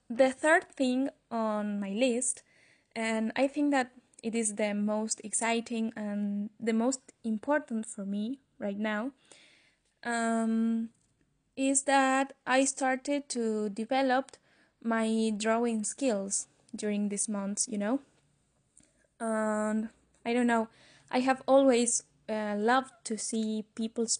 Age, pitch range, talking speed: 20-39, 215-255 Hz, 125 wpm